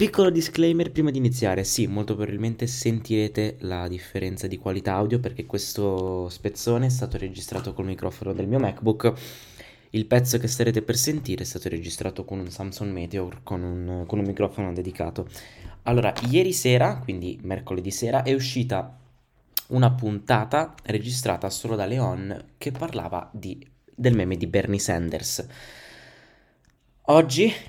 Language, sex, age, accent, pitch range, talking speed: Italian, male, 20-39, native, 95-120 Hz, 145 wpm